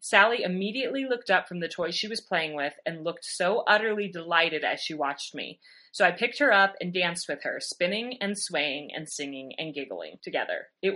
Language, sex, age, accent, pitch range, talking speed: English, female, 30-49, American, 155-205 Hz, 210 wpm